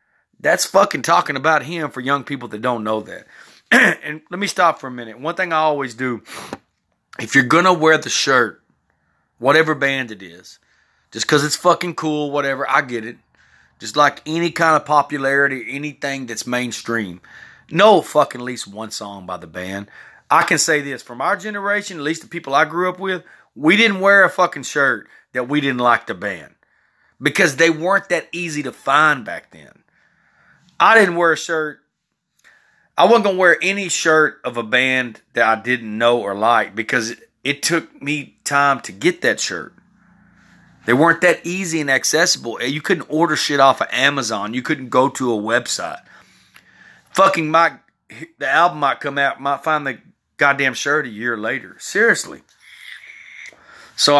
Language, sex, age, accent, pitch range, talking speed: English, male, 30-49, American, 125-170 Hz, 180 wpm